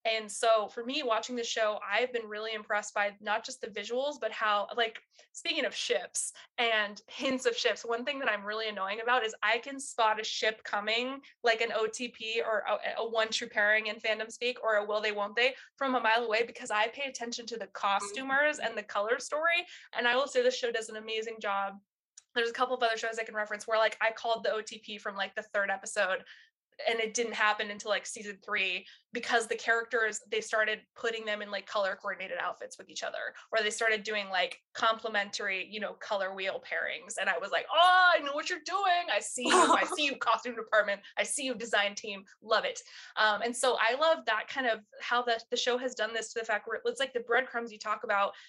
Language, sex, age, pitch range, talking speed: English, female, 20-39, 215-245 Hz, 235 wpm